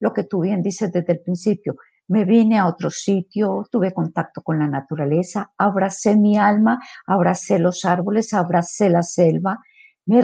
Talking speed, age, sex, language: 165 wpm, 50-69, female, Spanish